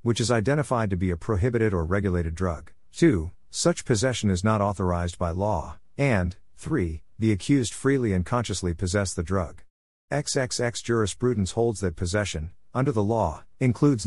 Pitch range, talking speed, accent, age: 90-115 Hz, 160 wpm, American, 50-69